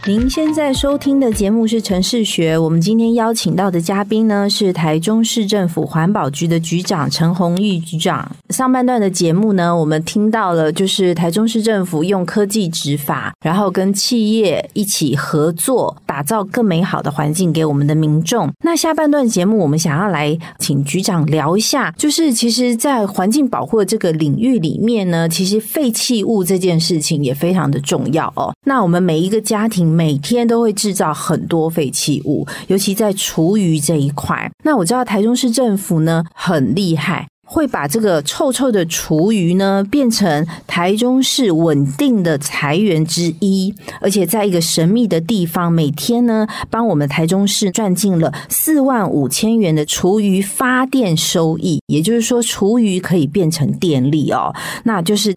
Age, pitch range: 30-49, 165-225 Hz